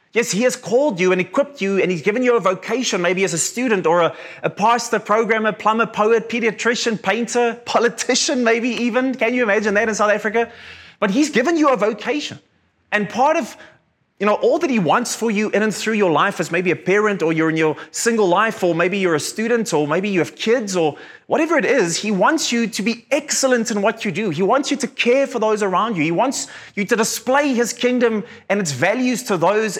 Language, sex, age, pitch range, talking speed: English, male, 20-39, 185-245 Hz, 230 wpm